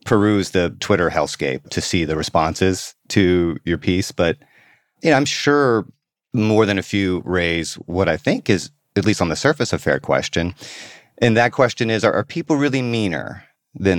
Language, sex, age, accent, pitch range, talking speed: English, male, 30-49, American, 85-110 Hz, 175 wpm